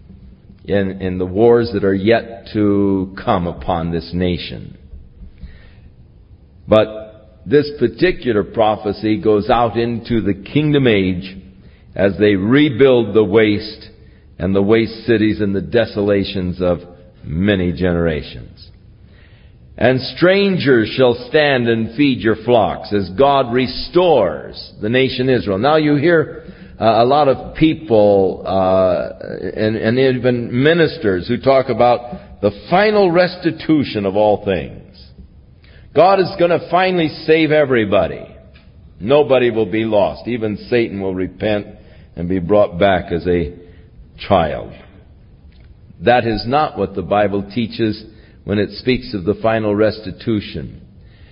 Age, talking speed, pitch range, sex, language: 50-69, 125 wpm, 95-130 Hz, male, English